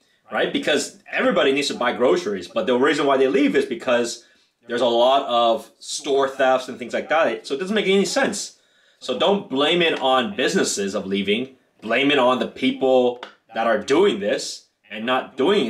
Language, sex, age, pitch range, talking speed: English, male, 30-49, 115-155 Hz, 195 wpm